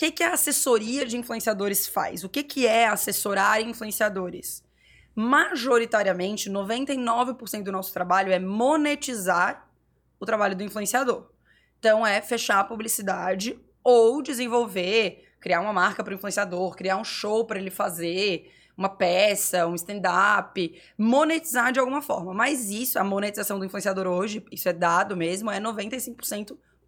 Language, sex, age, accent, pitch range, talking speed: Portuguese, female, 20-39, Brazilian, 195-245 Hz, 145 wpm